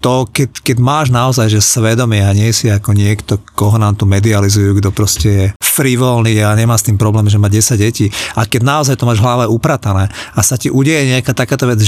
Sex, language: male, Slovak